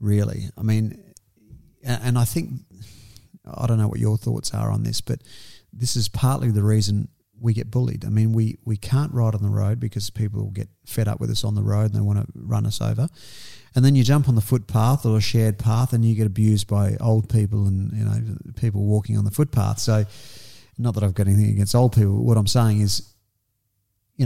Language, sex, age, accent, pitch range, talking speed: English, male, 40-59, Australian, 105-120 Hz, 225 wpm